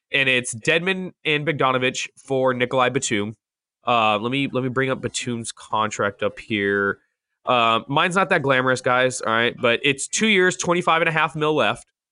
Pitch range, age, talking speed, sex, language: 125-160 Hz, 20-39, 185 wpm, male, English